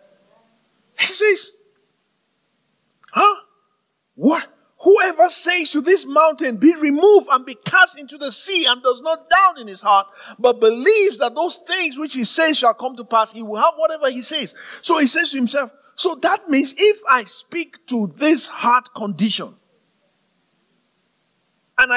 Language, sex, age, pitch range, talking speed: English, male, 50-69, 210-325 Hz, 160 wpm